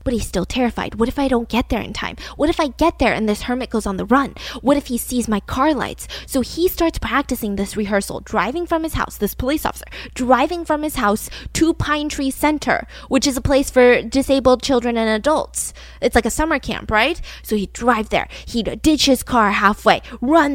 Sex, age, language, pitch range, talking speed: female, 10-29, English, 210-285 Hz, 225 wpm